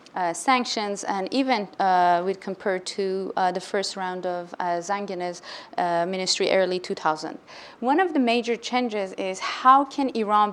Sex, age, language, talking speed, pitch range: female, 30-49, English, 155 wpm, 185-220 Hz